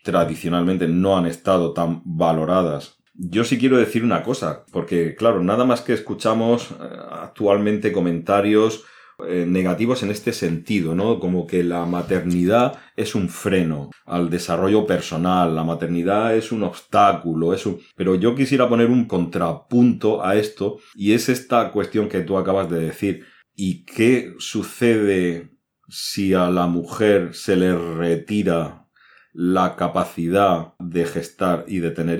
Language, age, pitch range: Spanish, 40-59, 85-105 Hz